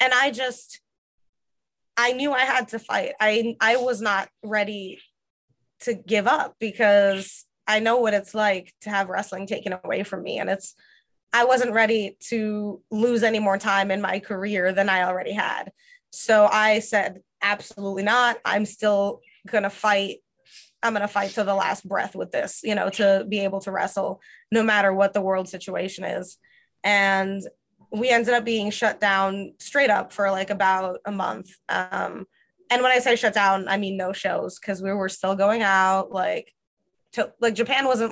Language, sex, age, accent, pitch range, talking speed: English, female, 20-39, American, 195-220 Hz, 185 wpm